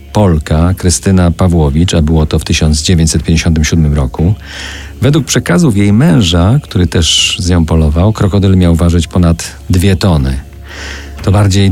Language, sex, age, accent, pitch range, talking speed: Polish, male, 40-59, native, 85-100 Hz, 135 wpm